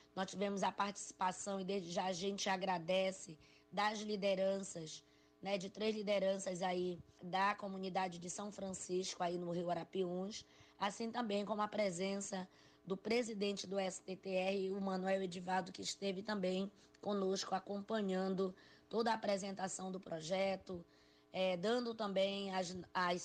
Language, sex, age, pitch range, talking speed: Portuguese, female, 20-39, 180-200 Hz, 135 wpm